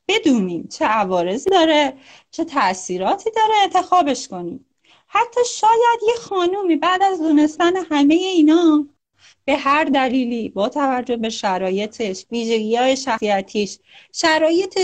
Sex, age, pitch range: female, 30-49, 215-330 Hz